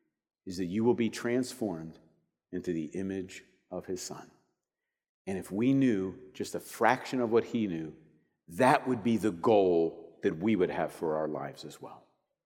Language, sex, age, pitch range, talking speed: English, male, 50-69, 105-150 Hz, 180 wpm